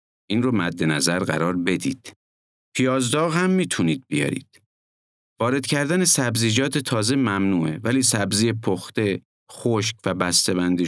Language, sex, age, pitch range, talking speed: Persian, male, 50-69, 90-130 Hz, 115 wpm